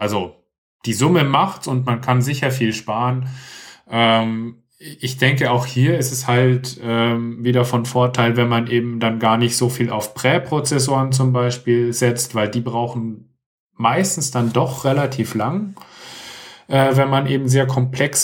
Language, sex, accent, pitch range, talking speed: German, male, German, 110-130 Hz, 160 wpm